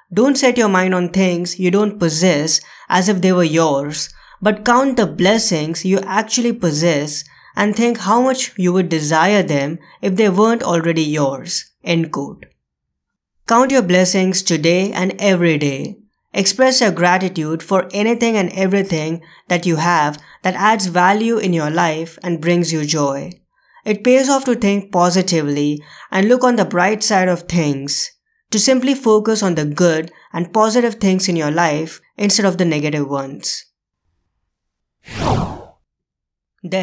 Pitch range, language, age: 160-205 Hz, English, 20-39